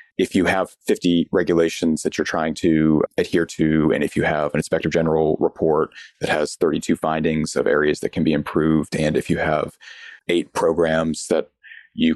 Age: 30-49